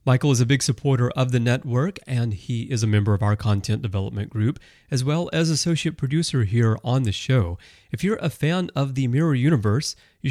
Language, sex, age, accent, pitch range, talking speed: English, male, 30-49, American, 105-150 Hz, 210 wpm